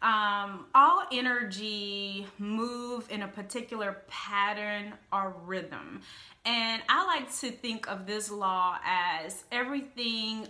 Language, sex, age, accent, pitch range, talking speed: English, female, 30-49, American, 200-250 Hz, 115 wpm